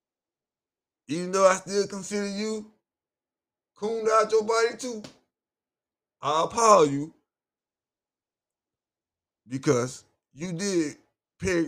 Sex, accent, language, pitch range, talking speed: male, American, English, 125-205 Hz, 90 wpm